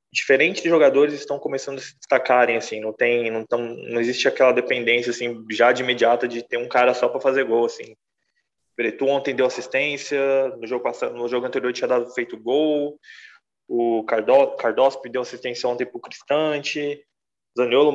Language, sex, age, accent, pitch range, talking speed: Portuguese, male, 20-39, Brazilian, 120-150 Hz, 175 wpm